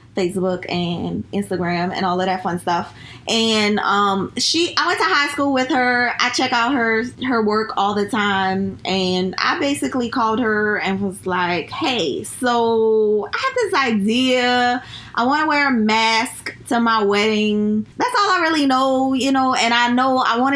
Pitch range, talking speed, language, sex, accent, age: 185-240 Hz, 185 wpm, English, female, American, 20-39